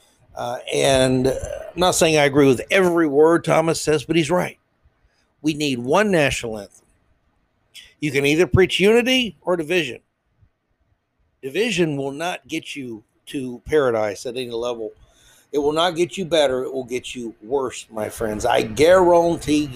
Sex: male